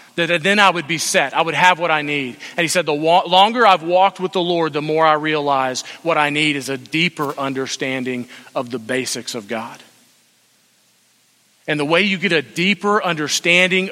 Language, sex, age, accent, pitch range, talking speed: English, male, 40-59, American, 145-175 Hz, 200 wpm